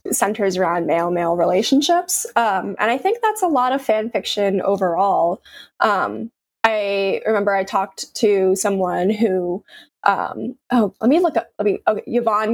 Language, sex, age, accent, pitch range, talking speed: English, female, 20-39, American, 190-225 Hz, 165 wpm